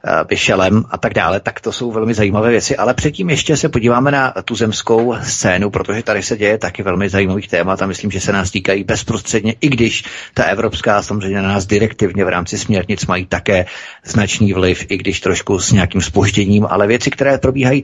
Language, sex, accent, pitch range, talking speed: Czech, male, native, 100-120 Hz, 195 wpm